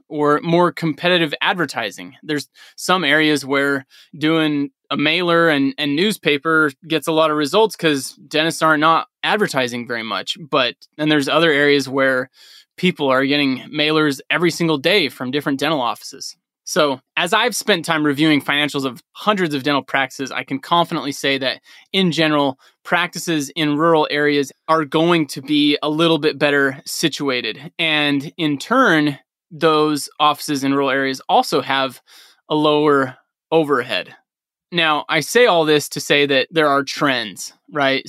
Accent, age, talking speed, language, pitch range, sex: American, 20-39, 160 wpm, English, 140-165 Hz, male